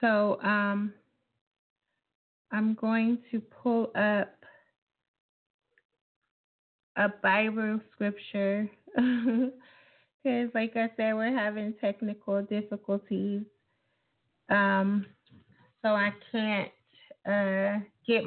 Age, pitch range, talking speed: 30-49, 210-240 Hz, 80 wpm